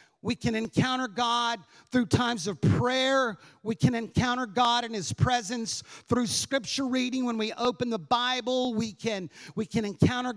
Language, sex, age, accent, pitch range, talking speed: English, male, 40-59, American, 175-240 Hz, 160 wpm